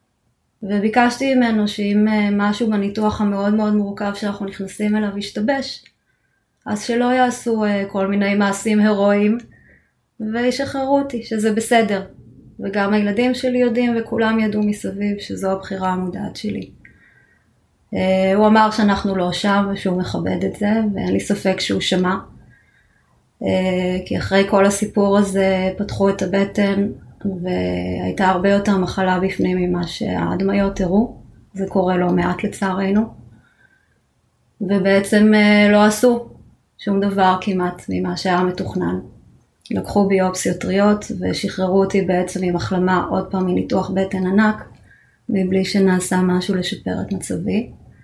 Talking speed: 120 wpm